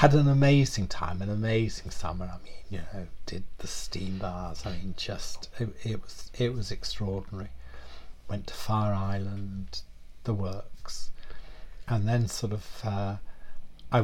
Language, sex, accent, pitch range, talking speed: English, male, British, 95-115 Hz, 155 wpm